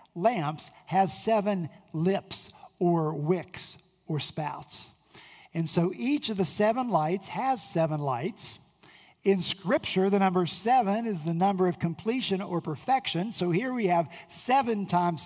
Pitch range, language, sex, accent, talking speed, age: 165-205 Hz, English, male, American, 140 wpm, 50-69